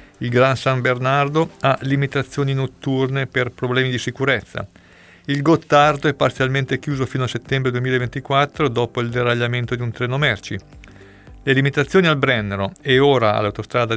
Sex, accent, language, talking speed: male, native, Italian, 145 wpm